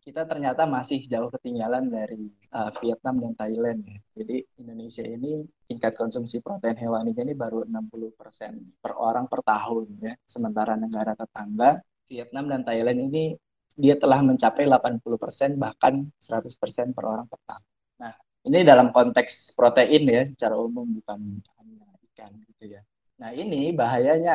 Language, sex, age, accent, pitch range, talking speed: Indonesian, male, 20-39, native, 115-155 Hz, 150 wpm